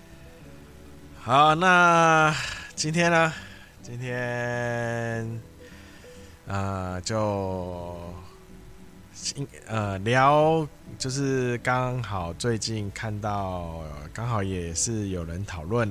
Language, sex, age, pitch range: Chinese, male, 20-39, 90-120 Hz